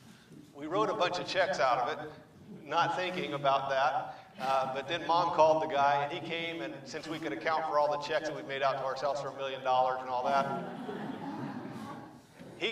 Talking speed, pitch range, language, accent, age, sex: 215 wpm, 140-160 Hz, English, American, 50-69, male